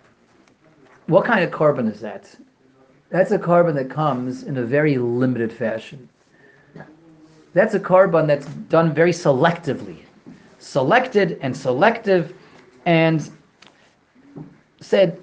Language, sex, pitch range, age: English, male, 145-195 Hz, 40-59